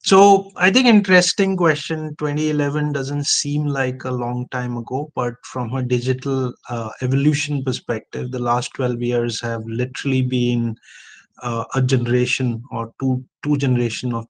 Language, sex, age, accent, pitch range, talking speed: English, male, 20-39, Indian, 120-145 Hz, 145 wpm